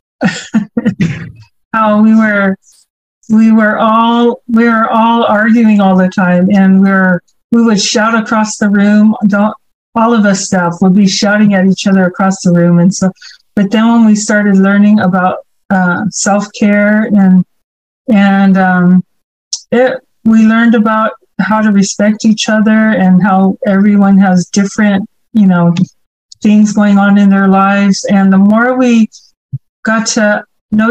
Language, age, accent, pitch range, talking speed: English, 40-59, American, 190-220 Hz, 155 wpm